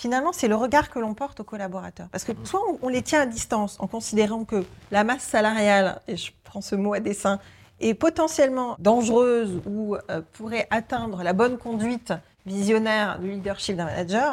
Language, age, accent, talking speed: French, 30-49, French, 185 wpm